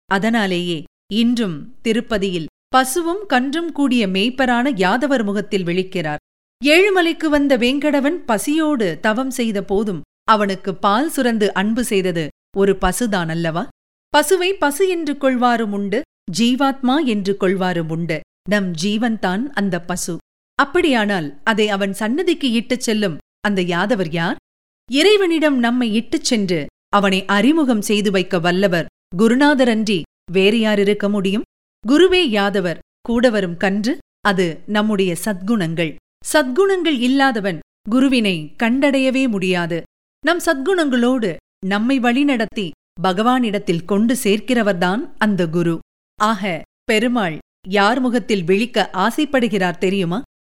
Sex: female